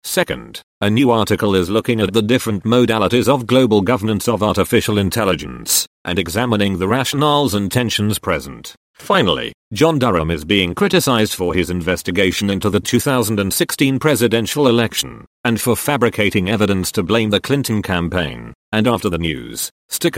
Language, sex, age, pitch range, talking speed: English, male, 40-59, 100-125 Hz, 150 wpm